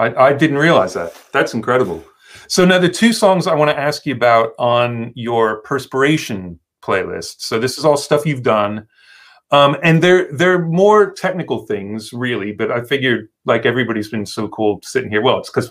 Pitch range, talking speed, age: 115-160 Hz, 190 wpm, 40-59